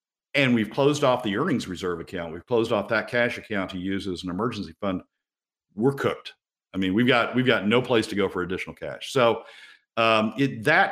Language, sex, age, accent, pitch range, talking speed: English, male, 50-69, American, 95-125 Hz, 215 wpm